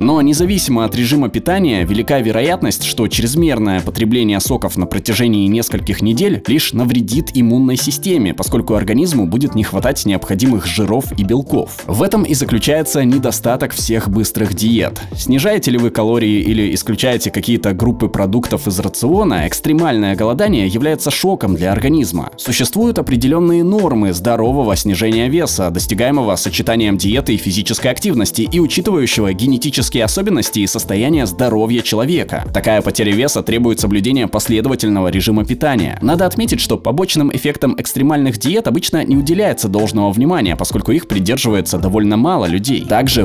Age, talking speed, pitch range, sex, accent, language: 20-39, 140 wpm, 100-130 Hz, male, native, Russian